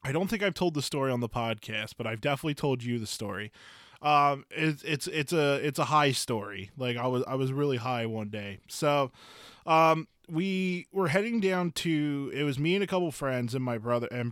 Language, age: English, 20-39